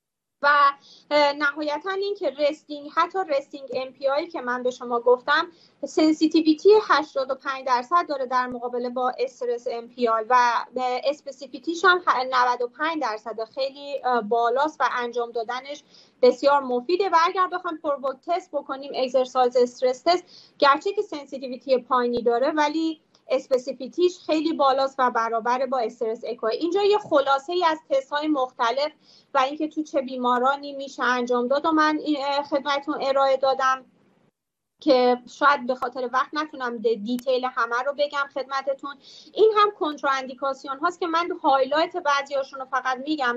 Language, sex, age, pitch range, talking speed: Persian, female, 30-49, 250-295 Hz, 140 wpm